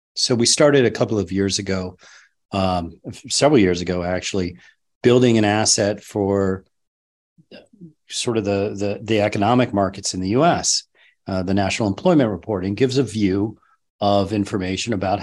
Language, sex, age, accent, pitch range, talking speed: English, male, 40-59, American, 95-115 Hz, 150 wpm